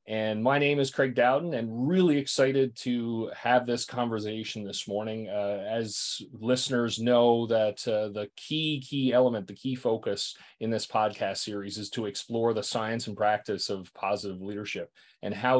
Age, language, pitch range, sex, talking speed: 30-49, English, 105-130 Hz, male, 170 wpm